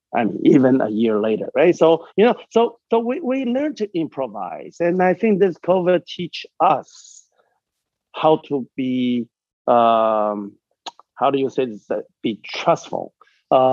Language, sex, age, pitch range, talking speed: English, male, 50-69, 130-180 Hz, 155 wpm